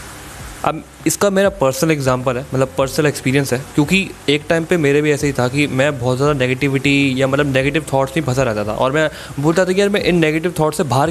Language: Hindi